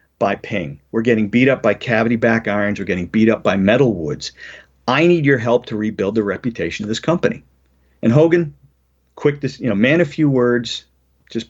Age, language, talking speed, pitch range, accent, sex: 40-59, English, 205 wpm, 90-120 Hz, American, male